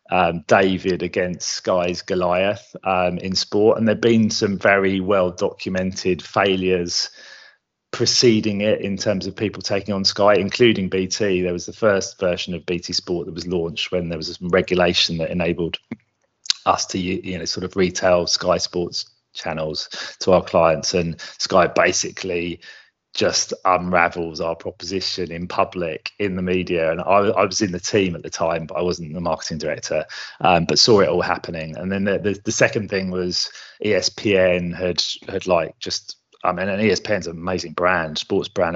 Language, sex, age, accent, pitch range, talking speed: English, male, 30-49, British, 85-95 Hz, 175 wpm